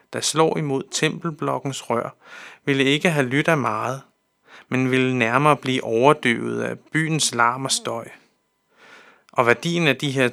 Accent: native